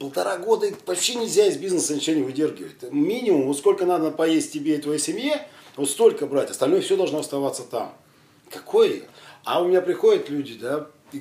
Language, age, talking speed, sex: Russian, 40-59, 180 wpm, male